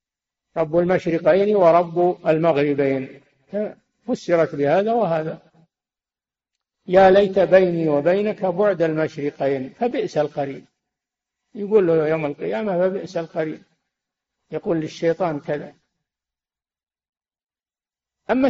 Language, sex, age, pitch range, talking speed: Arabic, male, 60-79, 160-205 Hz, 80 wpm